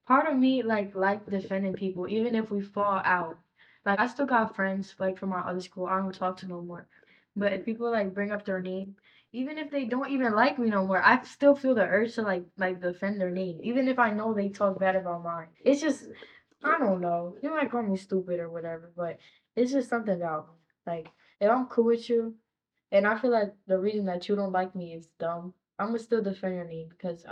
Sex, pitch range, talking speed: female, 180-225 Hz, 240 wpm